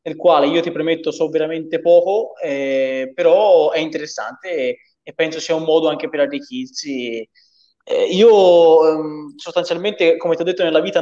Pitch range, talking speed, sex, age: 135-170 Hz, 170 wpm, male, 20-39